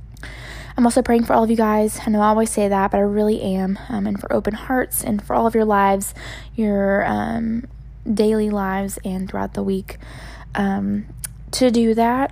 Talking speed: 200 wpm